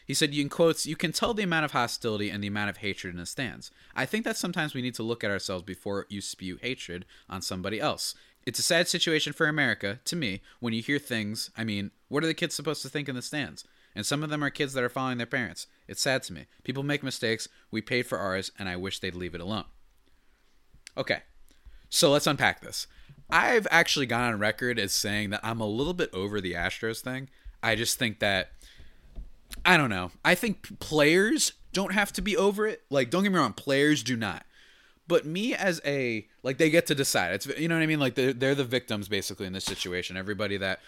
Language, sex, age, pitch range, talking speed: English, male, 30-49, 100-140 Hz, 230 wpm